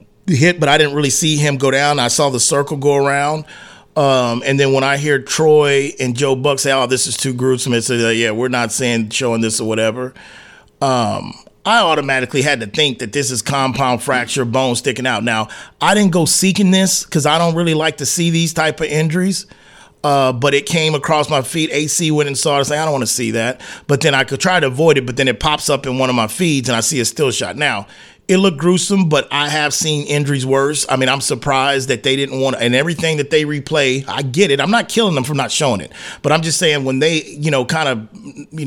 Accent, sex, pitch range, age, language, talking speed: American, male, 125-155 Hz, 30-49, English, 255 wpm